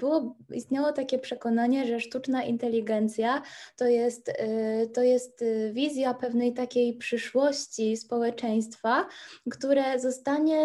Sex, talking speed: female, 95 wpm